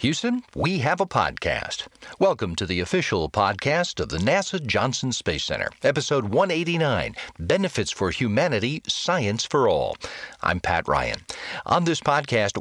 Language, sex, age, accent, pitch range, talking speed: Danish, male, 40-59, American, 115-165 Hz, 145 wpm